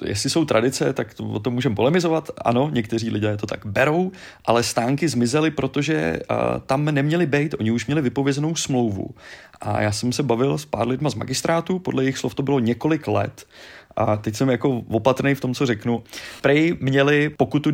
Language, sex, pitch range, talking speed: Czech, male, 105-130 Hz, 195 wpm